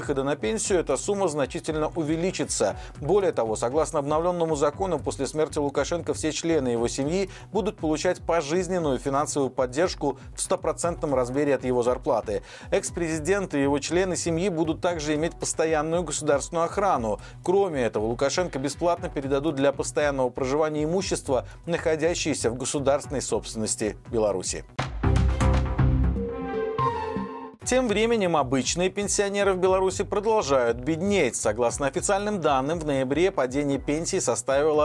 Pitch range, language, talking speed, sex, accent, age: 140-180 Hz, Russian, 120 wpm, male, native, 50-69